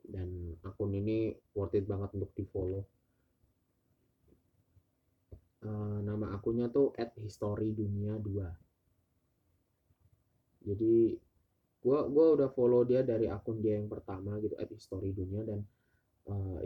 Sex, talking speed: male, 110 wpm